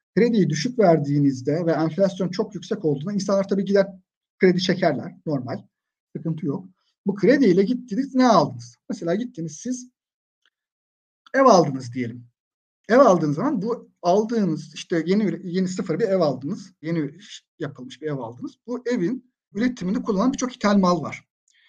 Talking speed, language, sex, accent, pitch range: 145 wpm, Turkish, male, native, 160-220 Hz